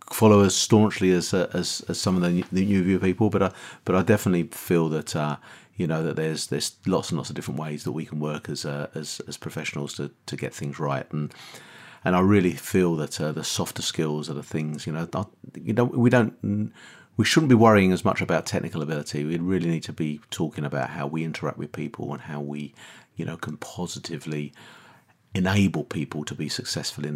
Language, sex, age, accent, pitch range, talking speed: English, male, 40-59, British, 80-105 Hz, 220 wpm